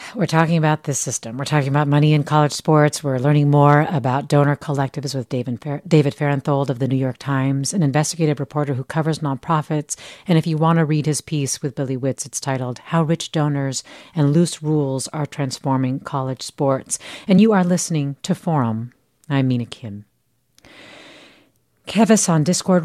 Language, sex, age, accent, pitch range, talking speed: English, female, 40-59, American, 140-180 Hz, 180 wpm